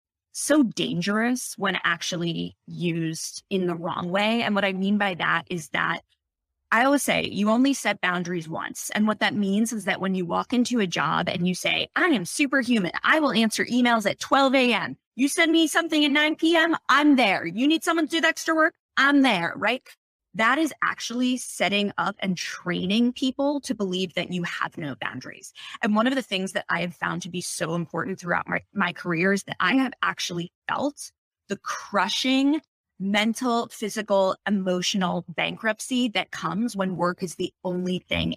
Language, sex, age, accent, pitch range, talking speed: English, female, 20-39, American, 180-250 Hz, 190 wpm